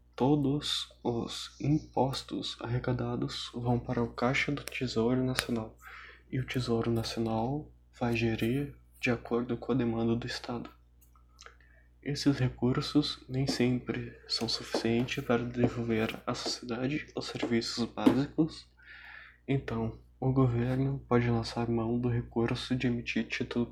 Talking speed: 120 wpm